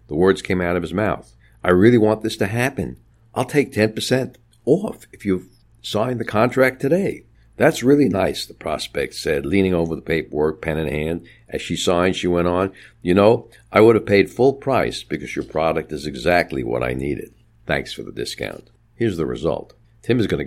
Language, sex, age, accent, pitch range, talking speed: English, male, 60-79, American, 75-115 Hz, 200 wpm